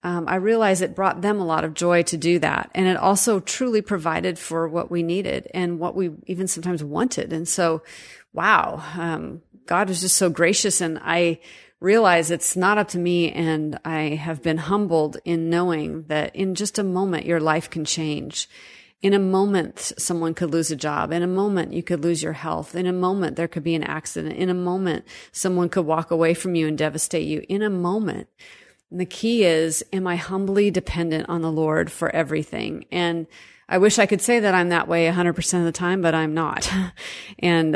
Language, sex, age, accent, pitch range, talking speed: English, female, 30-49, American, 165-195 Hz, 210 wpm